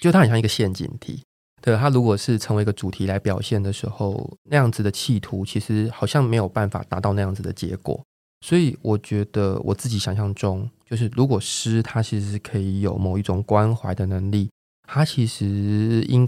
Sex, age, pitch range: male, 20-39, 100-120 Hz